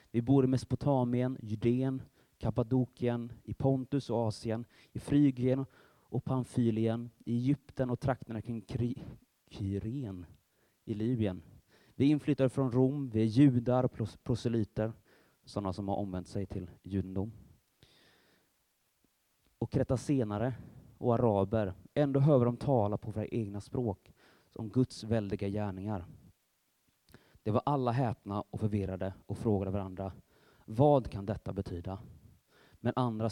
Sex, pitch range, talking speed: male, 100-125 Hz, 130 wpm